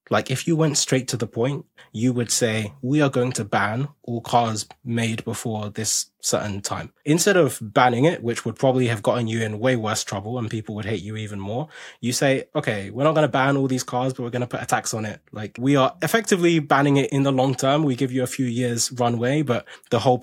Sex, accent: male, British